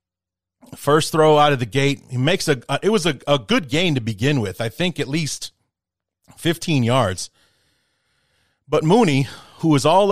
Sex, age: male, 30-49